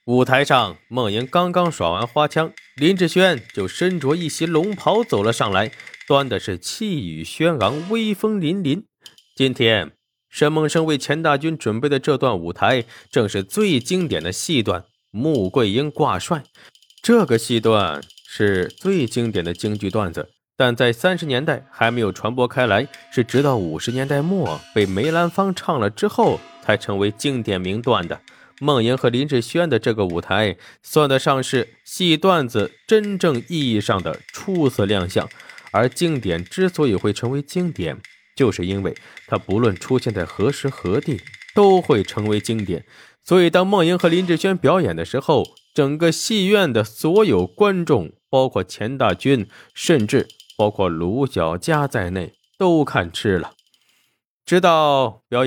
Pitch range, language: 105-165 Hz, Chinese